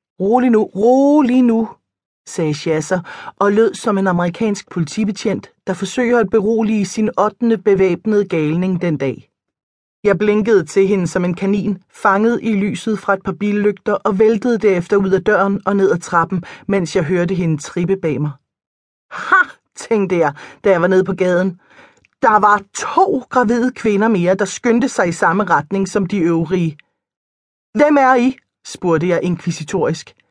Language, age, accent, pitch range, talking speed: Danish, 30-49, native, 170-220 Hz, 165 wpm